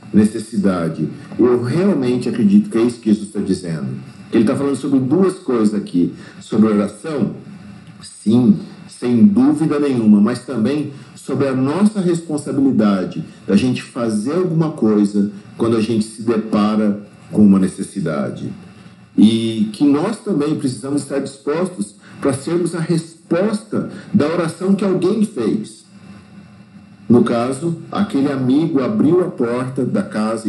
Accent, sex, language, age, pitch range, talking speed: Brazilian, male, Portuguese, 50-69, 110-170 Hz, 135 wpm